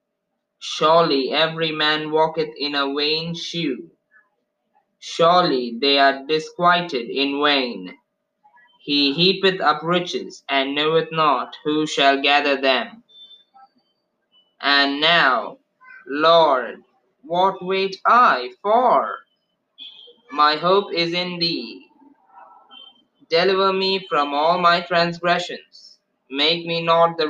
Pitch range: 145-205 Hz